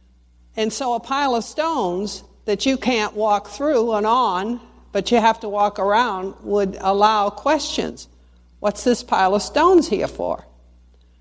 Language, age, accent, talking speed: English, 60-79, American, 155 wpm